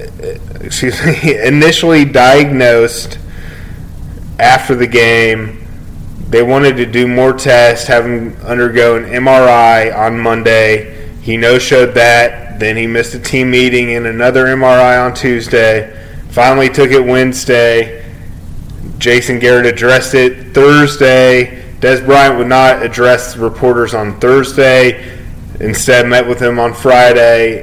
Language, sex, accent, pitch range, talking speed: English, male, American, 110-125 Hz, 130 wpm